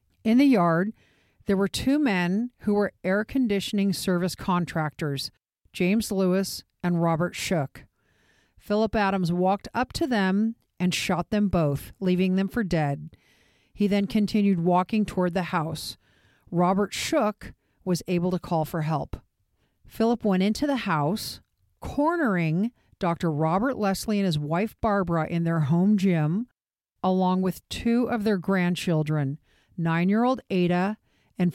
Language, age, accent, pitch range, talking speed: English, 50-69, American, 170-215 Hz, 140 wpm